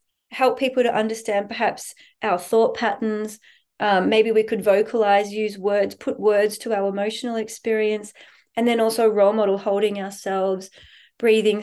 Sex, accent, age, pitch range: female, Australian, 30-49, 200-235 Hz